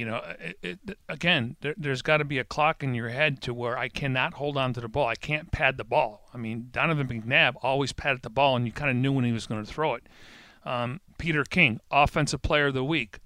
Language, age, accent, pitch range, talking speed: English, 40-59, American, 120-150 Hz, 245 wpm